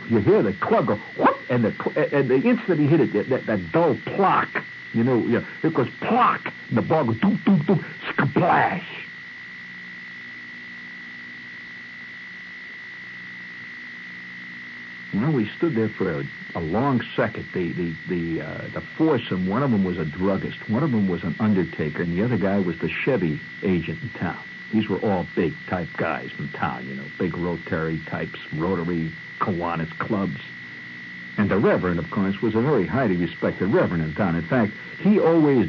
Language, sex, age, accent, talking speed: English, male, 60-79, American, 165 wpm